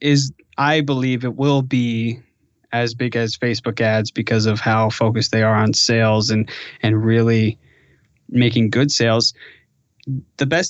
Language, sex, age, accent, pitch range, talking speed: English, male, 20-39, American, 115-140 Hz, 150 wpm